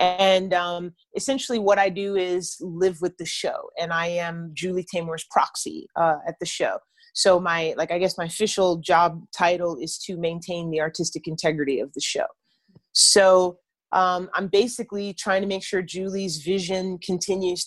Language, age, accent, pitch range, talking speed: English, 30-49, American, 165-195 Hz, 170 wpm